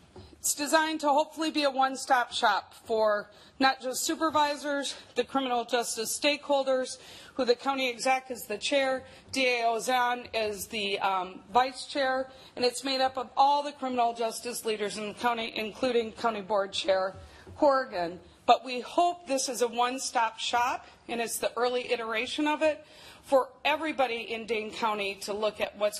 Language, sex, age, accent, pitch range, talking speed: English, female, 40-59, American, 225-275 Hz, 165 wpm